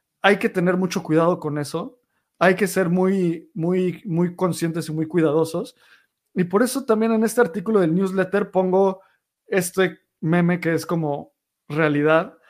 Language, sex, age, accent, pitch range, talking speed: Spanish, male, 40-59, Mexican, 160-190 Hz, 160 wpm